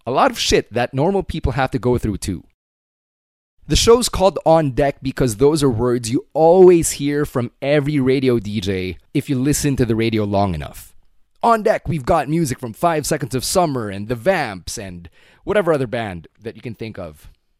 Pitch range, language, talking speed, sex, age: 110-150 Hz, English, 200 wpm, male, 20-39